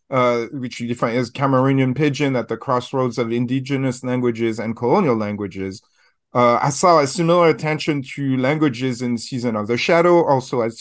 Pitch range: 120-155 Hz